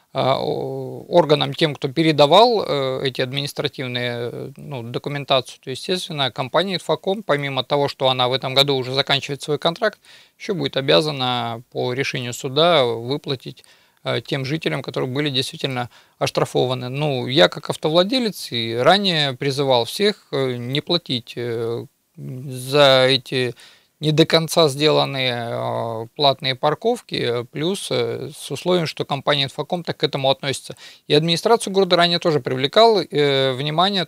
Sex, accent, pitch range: male, native, 130-165 Hz